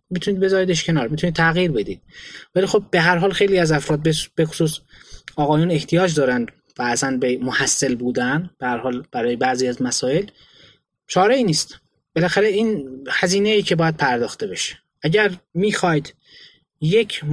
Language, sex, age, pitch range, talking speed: Persian, male, 20-39, 140-185 Hz, 150 wpm